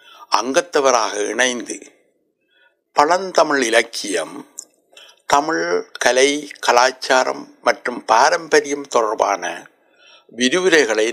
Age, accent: 60-79, native